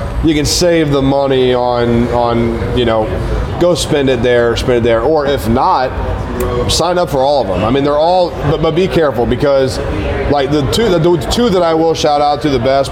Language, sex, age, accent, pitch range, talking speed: English, male, 30-49, American, 110-140 Hz, 225 wpm